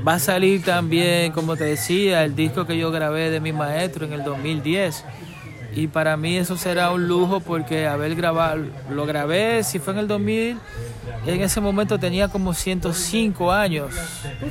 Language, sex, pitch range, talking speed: English, male, 145-195 Hz, 175 wpm